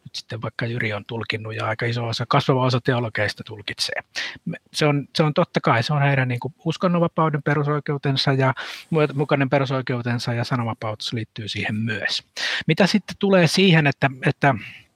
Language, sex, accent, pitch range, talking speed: Finnish, male, native, 120-155 Hz, 155 wpm